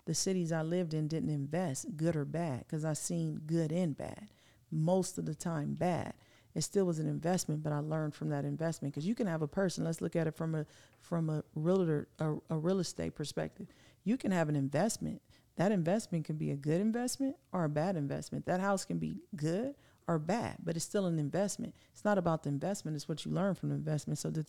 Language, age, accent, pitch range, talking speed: English, 40-59, American, 155-185 Hz, 230 wpm